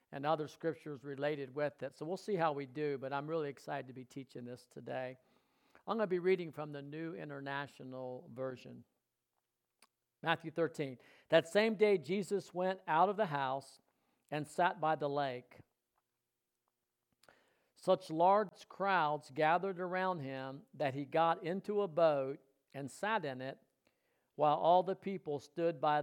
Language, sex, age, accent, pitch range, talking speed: English, male, 50-69, American, 135-175 Hz, 160 wpm